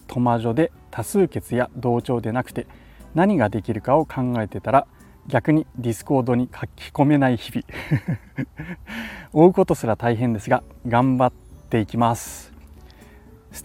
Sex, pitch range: male, 110-135 Hz